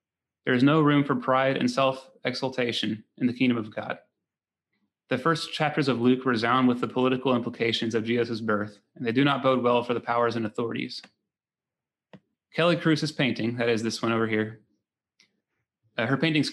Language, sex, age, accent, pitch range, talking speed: English, male, 30-49, American, 115-135 Hz, 180 wpm